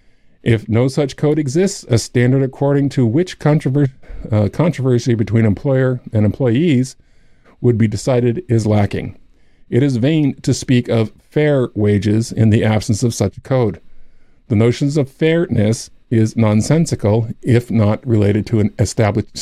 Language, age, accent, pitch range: English, 50-69, American, 110-135 Hz